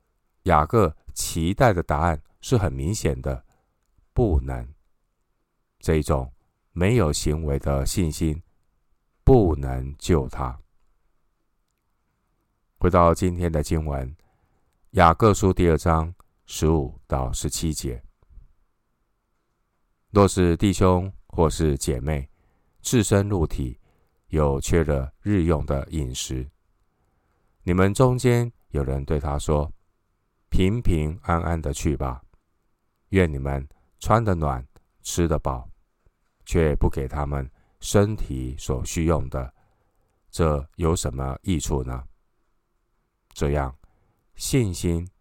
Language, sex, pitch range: Chinese, male, 70-90 Hz